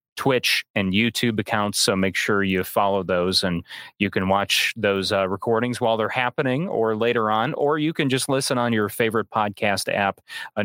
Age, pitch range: 30-49, 100-130 Hz